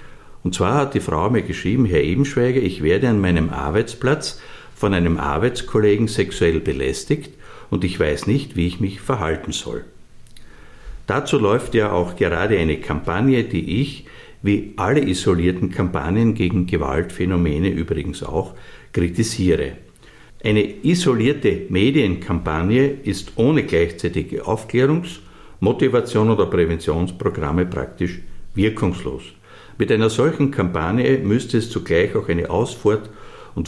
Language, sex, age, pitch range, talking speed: German, male, 60-79, 85-120 Hz, 125 wpm